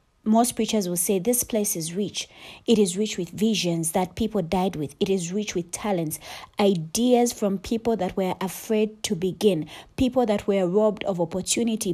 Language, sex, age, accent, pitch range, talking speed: English, female, 30-49, South African, 185-235 Hz, 180 wpm